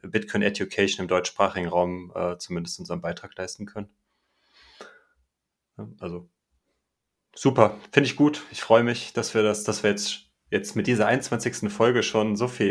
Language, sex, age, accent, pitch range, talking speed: German, male, 30-49, German, 95-115 Hz, 160 wpm